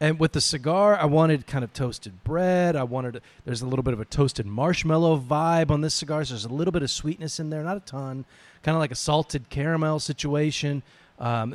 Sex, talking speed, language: male, 240 wpm, English